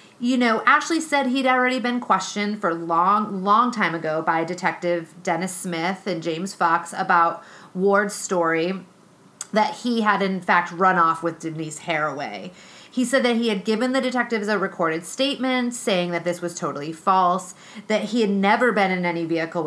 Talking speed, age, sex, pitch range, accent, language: 180 wpm, 30-49, female, 175-235 Hz, American, English